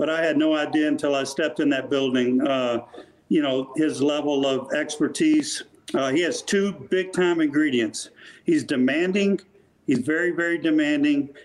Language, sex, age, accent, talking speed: English, male, 50-69, American, 160 wpm